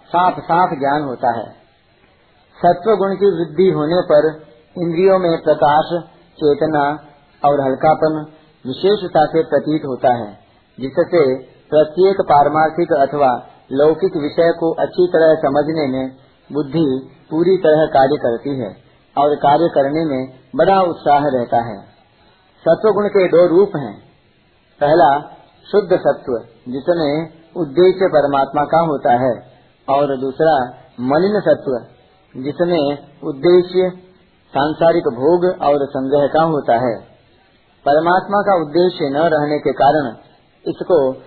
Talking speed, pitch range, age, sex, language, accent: 120 wpm, 140-175 Hz, 50-69, male, Hindi, native